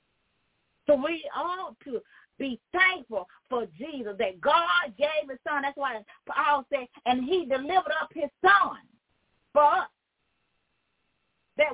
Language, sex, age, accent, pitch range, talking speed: English, female, 40-59, American, 225-350 Hz, 135 wpm